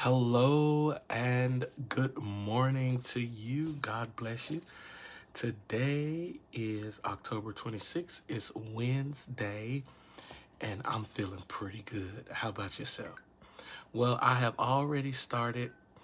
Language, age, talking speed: English, 40-59, 105 wpm